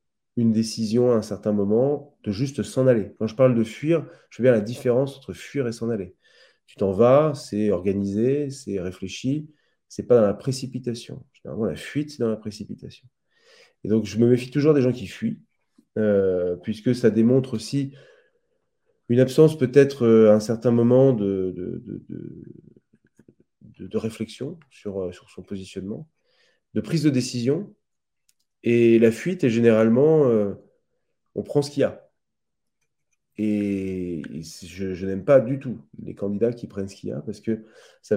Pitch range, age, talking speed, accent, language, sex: 105-135 Hz, 30-49, 175 wpm, French, French, male